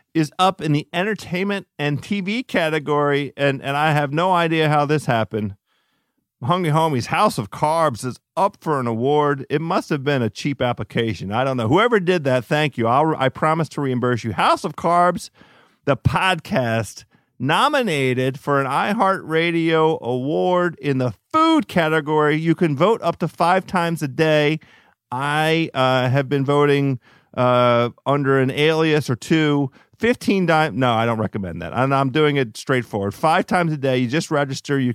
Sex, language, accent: male, English, American